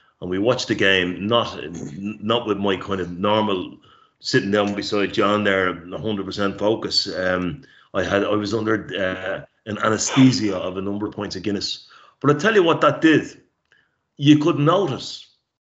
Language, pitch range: English, 100-120 Hz